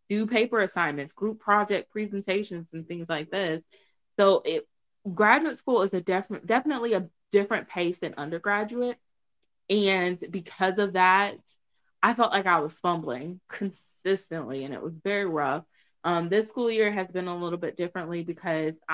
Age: 20-39